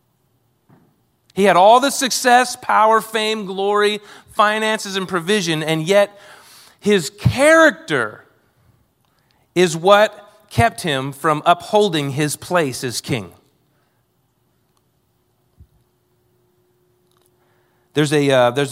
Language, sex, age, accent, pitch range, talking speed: English, male, 30-49, American, 130-185 Hz, 85 wpm